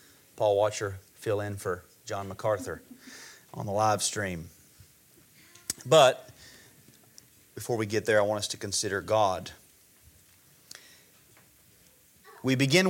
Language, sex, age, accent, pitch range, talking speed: English, male, 30-49, American, 120-155 Hz, 105 wpm